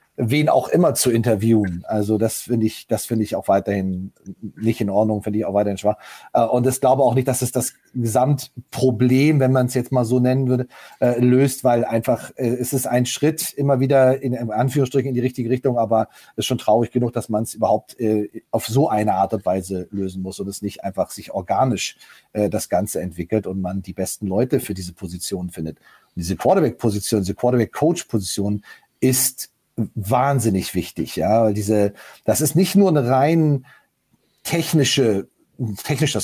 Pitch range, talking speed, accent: 110-130 Hz, 180 wpm, German